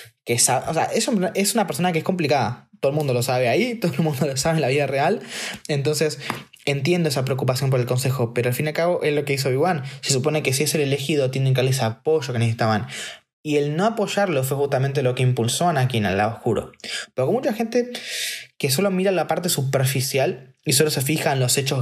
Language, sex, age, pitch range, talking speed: Spanish, male, 20-39, 130-180 Hz, 245 wpm